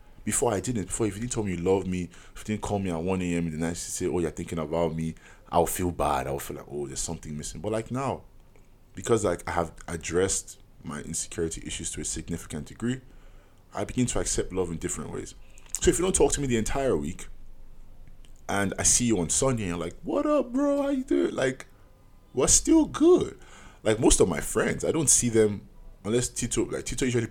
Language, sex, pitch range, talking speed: English, male, 85-120 Hz, 235 wpm